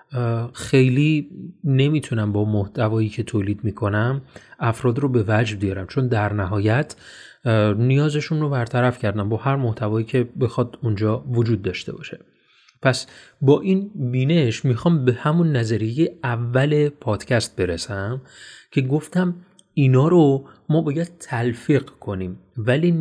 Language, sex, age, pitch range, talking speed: Persian, male, 30-49, 110-145 Hz, 125 wpm